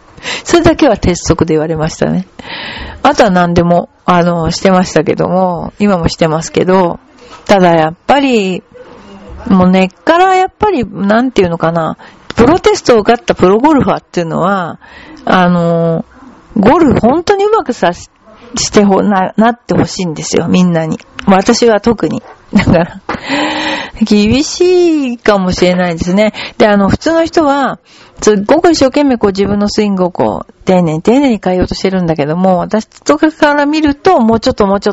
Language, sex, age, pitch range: Japanese, female, 40-59, 180-240 Hz